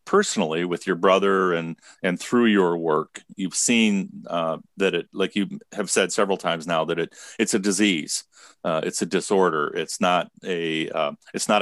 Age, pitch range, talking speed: 40-59, 85-105 Hz, 185 wpm